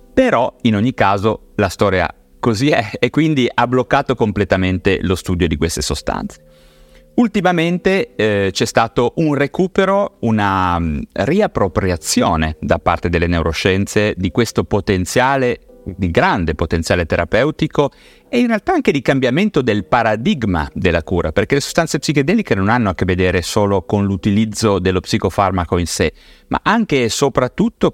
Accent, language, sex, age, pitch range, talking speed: native, Italian, male, 30-49, 90-130 Hz, 145 wpm